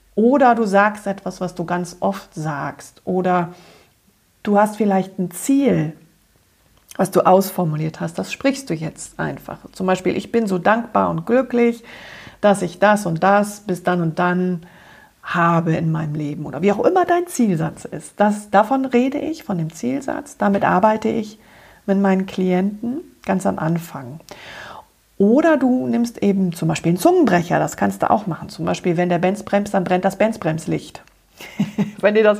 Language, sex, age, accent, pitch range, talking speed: German, female, 40-59, German, 175-220 Hz, 170 wpm